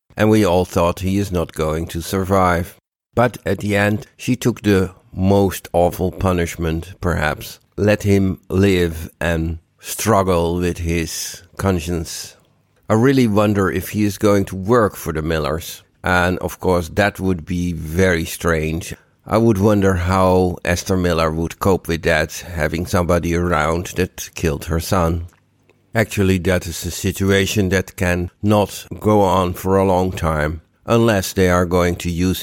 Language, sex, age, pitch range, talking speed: English, male, 60-79, 85-100 Hz, 160 wpm